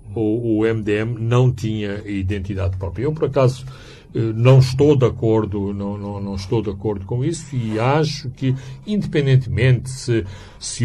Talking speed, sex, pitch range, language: 120 wpm, male, 105-125 Hz, Portuguese